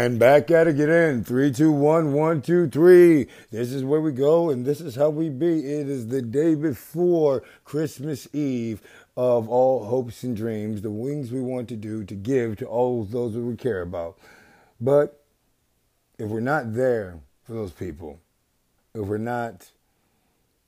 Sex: male